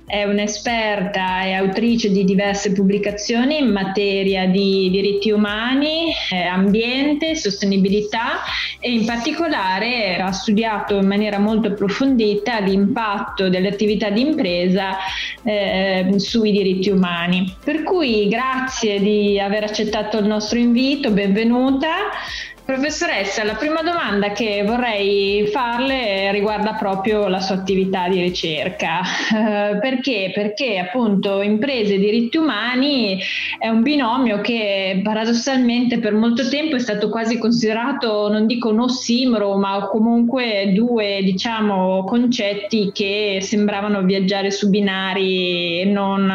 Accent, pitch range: native, 195-235 Hz